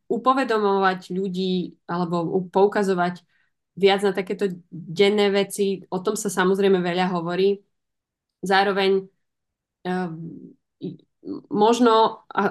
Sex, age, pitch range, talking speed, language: female, 20-39, 180-200 Hz, 85 wpm, Slovak